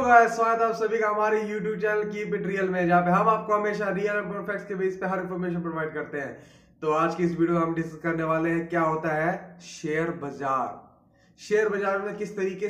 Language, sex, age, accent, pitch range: Hindi, male, 20-39, native, 165-200 Hz